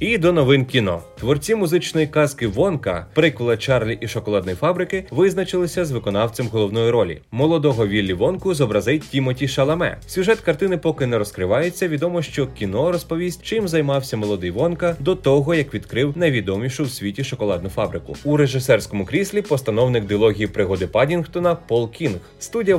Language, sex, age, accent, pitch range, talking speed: Ukrainian, male, 30-49, native, 105-160 Hz, 145 wpm